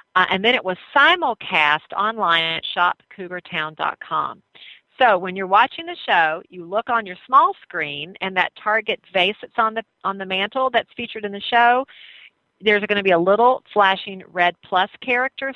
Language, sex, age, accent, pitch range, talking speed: English, female, 40-59, American, 175-220 Hz, 175 wpm